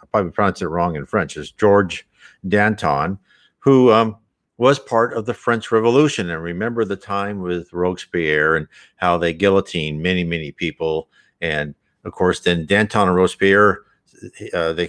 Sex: male